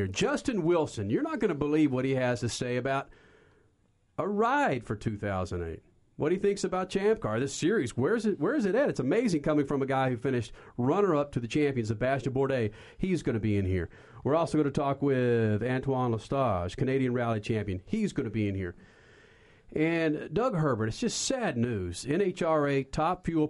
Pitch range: 110-150 Hz